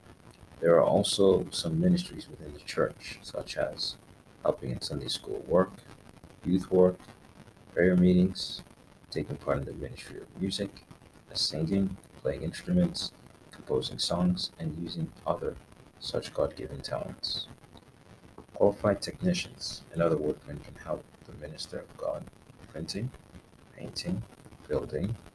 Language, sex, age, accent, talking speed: English, male, 40-59, American, 120 wpm